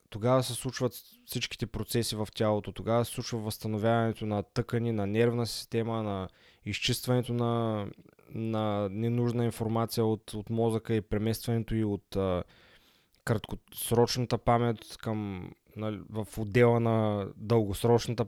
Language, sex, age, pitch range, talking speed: Bulgarian, male, 20-39, 105-120 Hz, 125 wpm